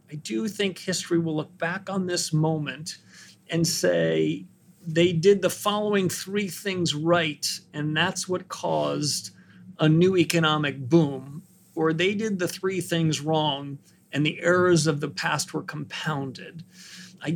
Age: 40-59